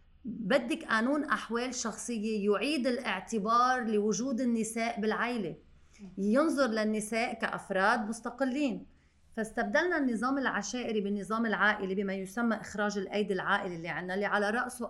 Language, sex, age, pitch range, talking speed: Arabic, female, 30-49, 185-240 Hz, 115 wpm